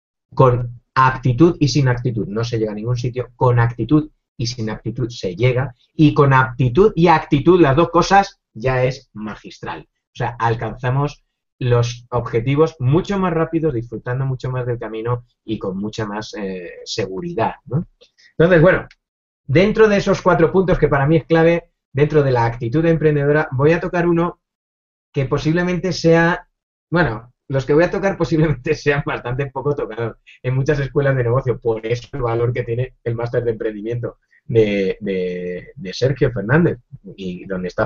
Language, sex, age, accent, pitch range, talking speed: Spanish, male, 30-49, Spanish, 110-155 Hz, 170 wpm